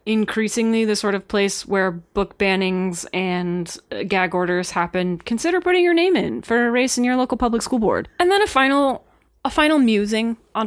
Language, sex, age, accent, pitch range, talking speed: English, female, 20-39, American, 180-225 Hz, 190 wpm